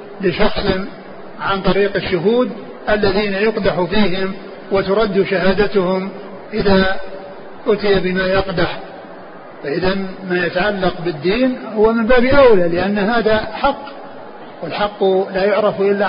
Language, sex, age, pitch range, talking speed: Arabic, male, 50-69, 180-210 Hz, 105 wpm